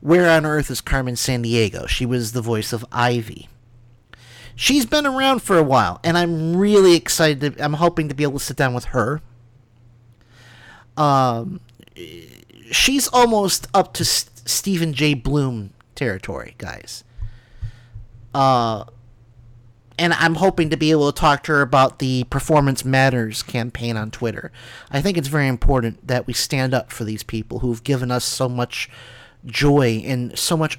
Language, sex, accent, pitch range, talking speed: English, male, American, 120-165 Hz, 160 wpm